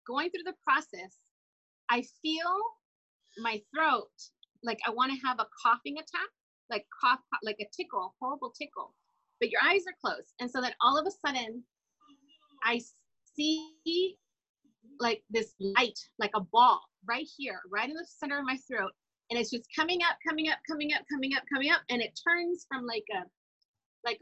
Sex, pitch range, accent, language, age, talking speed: female, 240-345 Hz, American, English, 30-49, 180 wpm